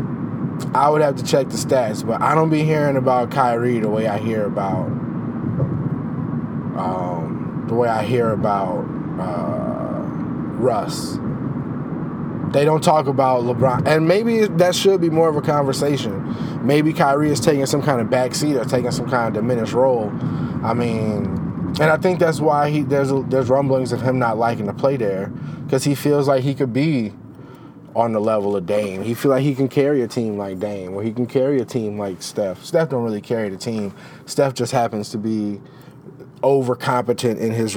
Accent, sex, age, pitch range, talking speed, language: American, male, 20-39, 115-150 Hz, 190 wpm, English